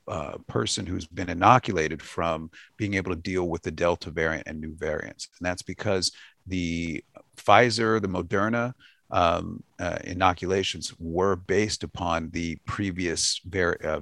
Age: 40-59